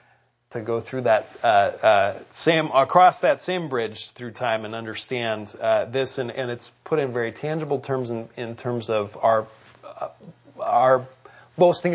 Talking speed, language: 165 wpm, English